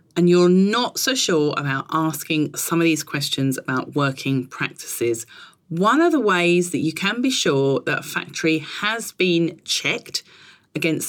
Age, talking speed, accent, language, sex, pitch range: 40-59, 160 wpm, British, English, female, 140-195 Hz